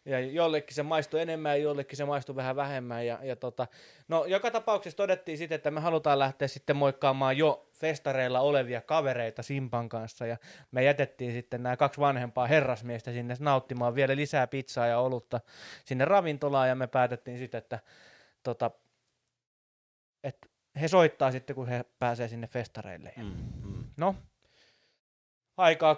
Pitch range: 120-150 Hz